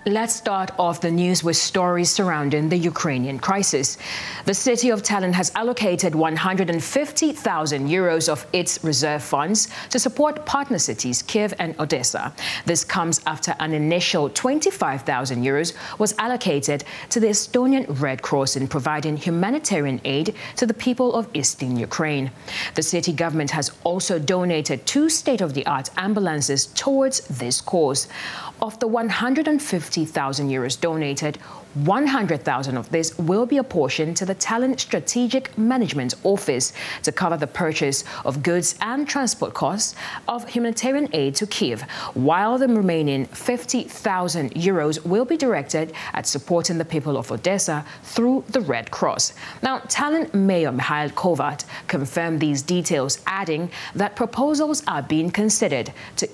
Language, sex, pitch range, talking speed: English, female, 150-230 Hz, 140 wpm